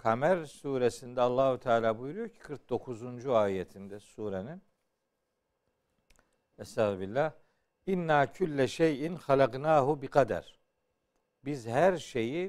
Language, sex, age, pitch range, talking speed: Turkish, male, 60-79, 120-160 Hz, 85 wpm